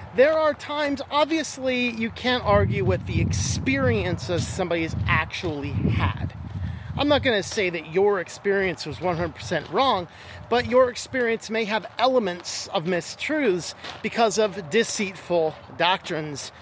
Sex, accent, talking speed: male, American, 130 wpm